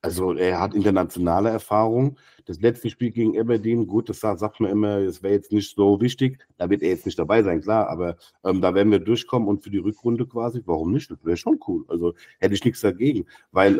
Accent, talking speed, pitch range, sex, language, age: German, 230 wpm, 100-130 Hz, male, German, 50-69